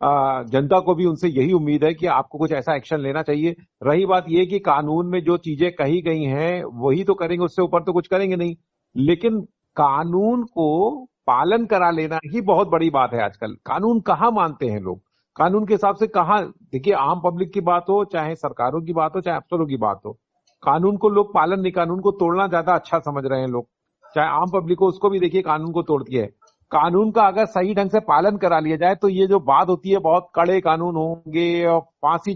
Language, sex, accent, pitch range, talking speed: Hindi, male, native, 160-190 Hz, 220 wpm